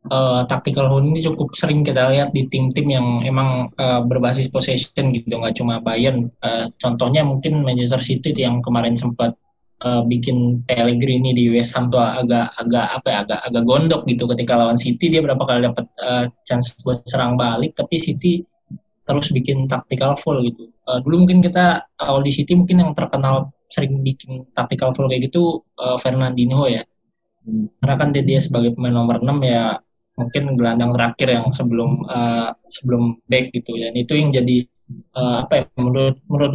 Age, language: 20-39, Indonesian